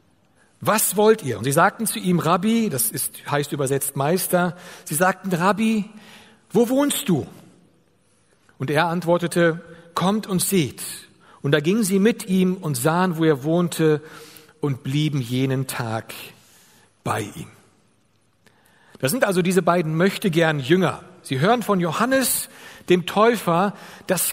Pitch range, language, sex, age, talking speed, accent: 170-225 Hz, German, male, 60-79, 145 wpm, German